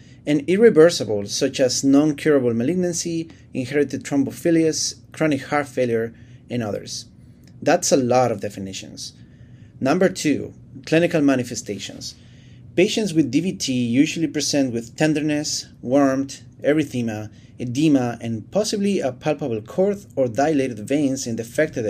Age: 30-49